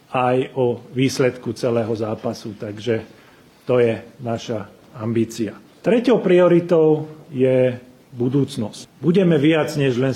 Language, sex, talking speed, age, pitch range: Slovak, male, 105 wpm, 40-59, 125-150 Hz